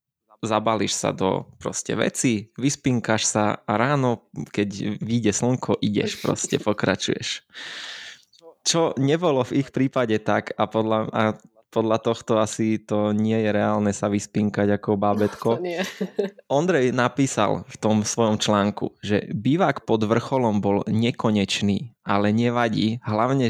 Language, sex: Slovak, male